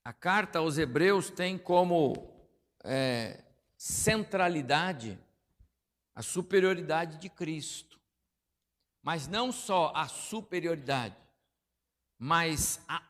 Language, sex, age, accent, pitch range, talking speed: Portuguese, male, 60-79, Brazilian, 110-155 Hz, 80 wpm